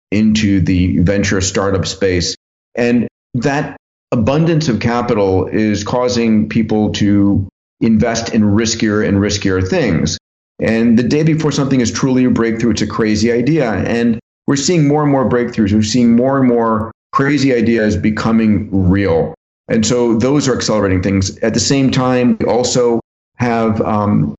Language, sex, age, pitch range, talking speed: English, male, 40-59, 100-125 Hz, 155 wpm